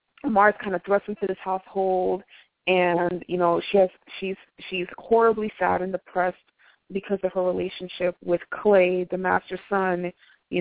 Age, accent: 20-39, American